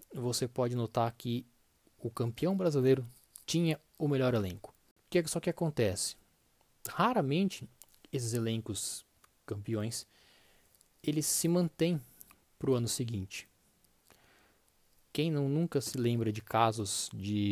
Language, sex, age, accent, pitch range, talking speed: Portuguese, male, 20-39, Brazilian, 110-135 Hz, 125 wpm